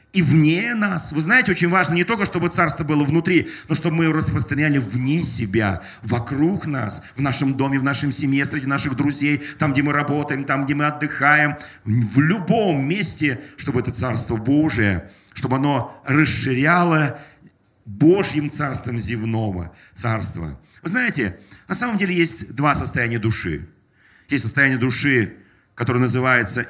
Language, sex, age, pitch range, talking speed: Russian, male, 40-59, 105-145 Hz, 150 wpm